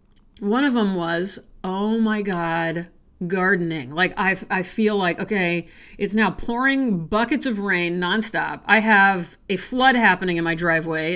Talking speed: 150 wpm